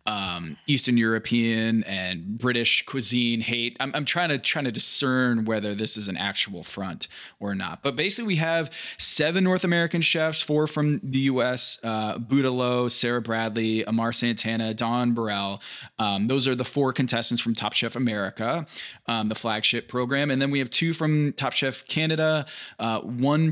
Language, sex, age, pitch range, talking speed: English, male, 20-39, 110-140 Hz, 170 wpm